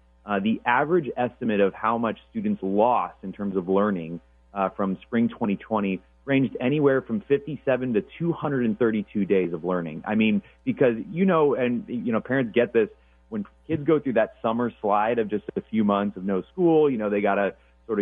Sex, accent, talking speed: male, American, 195 wpm